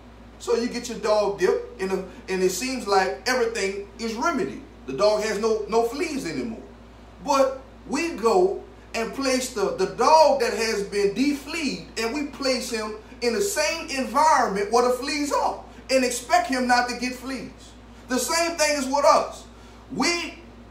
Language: English